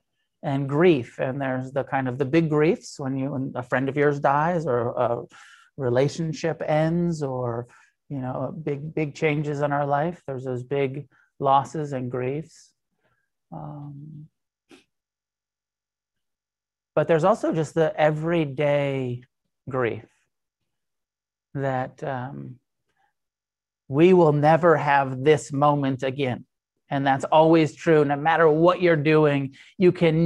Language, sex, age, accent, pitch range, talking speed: English, male, 30-49, American, 135-170 Hz, 130 wpm